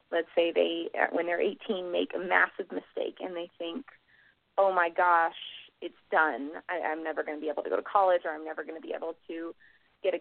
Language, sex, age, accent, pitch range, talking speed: English, female, 30-49, American, 165-200 Hz, 225 wpm